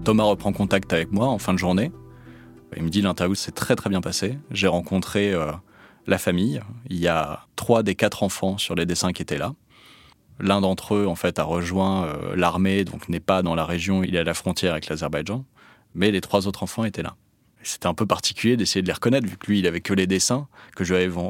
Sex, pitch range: male, 90-110 Hz